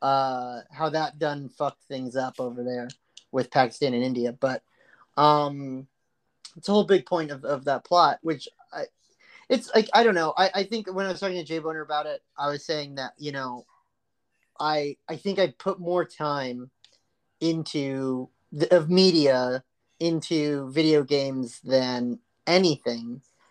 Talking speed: 165 wpm